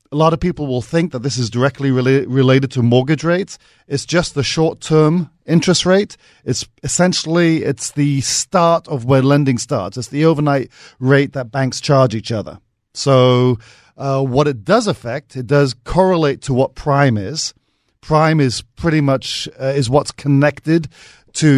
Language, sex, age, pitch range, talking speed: English, male, 40-59, 125-155 Hz, 165 wpm